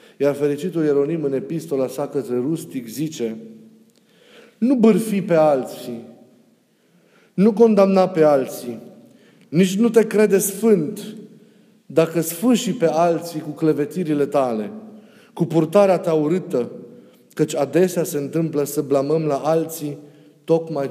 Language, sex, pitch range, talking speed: Romanian, male, 145-195 Hz, 120 wpm